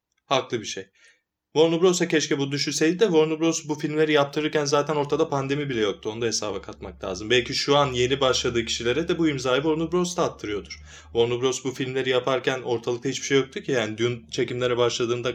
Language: Turkish